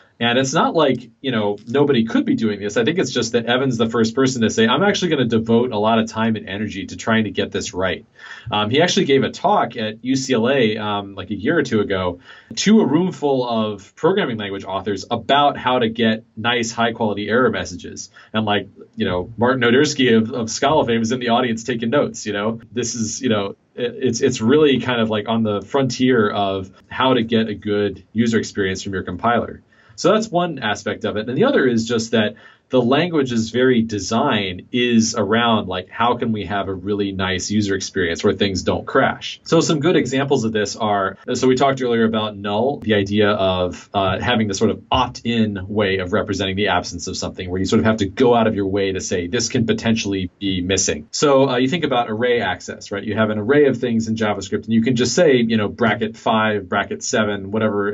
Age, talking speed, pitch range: 30-49, 230 wpm, 105-125 Hz